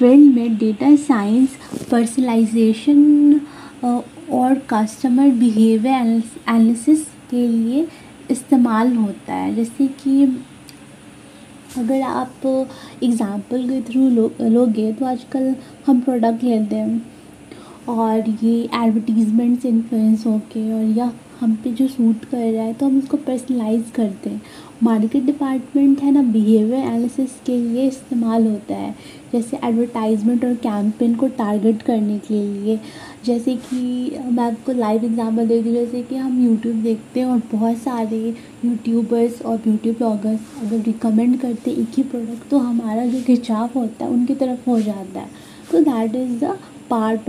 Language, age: Hindi, 20-39